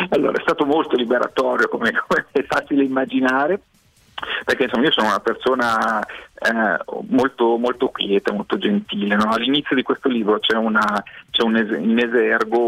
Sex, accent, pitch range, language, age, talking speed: male, native, 110-145 Hz, Italian, 40-59, 160 wpm